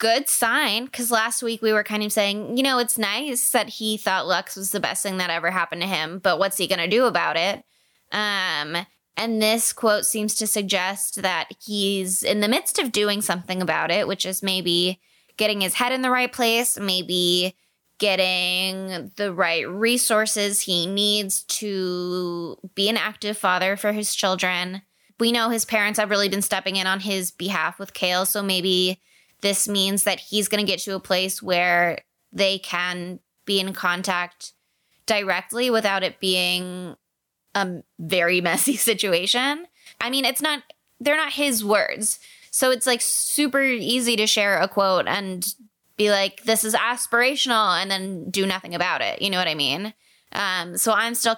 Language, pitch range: English, 185-225 Hz